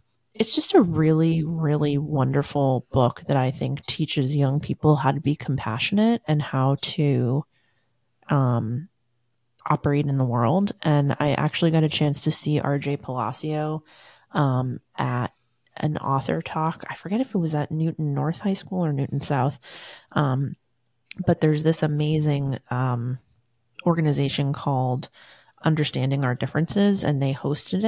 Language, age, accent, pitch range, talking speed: English, 30-49, American, 135-155 Hz, 145 wpm